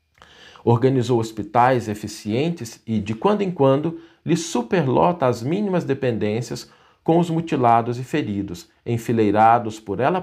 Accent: Brazilian